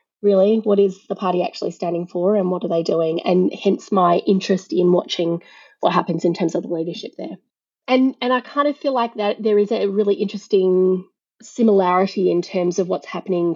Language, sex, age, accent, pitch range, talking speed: English, female, 30-49, Australian, 180-220 Hz, 205 wpm